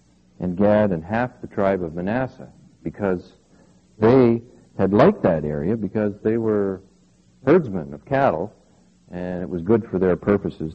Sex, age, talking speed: male, 50-69, 150 wpm